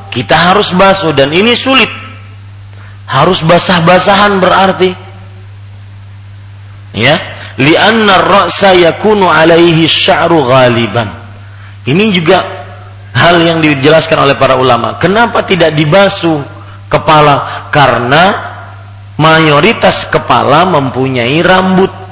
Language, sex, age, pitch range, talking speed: Malay, male, 40-59, 105-165 Hz, 90 wpm